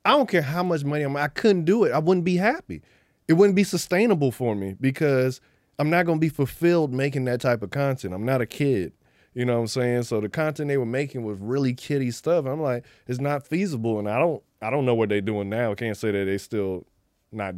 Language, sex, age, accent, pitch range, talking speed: English, male, 20-39, American, 110-150 Hz, 255 wpm